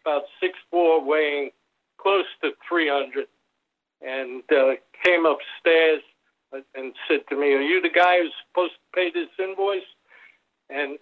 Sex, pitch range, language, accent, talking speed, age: male, 145-200 Hz, English, American, 140 wpm, 60-79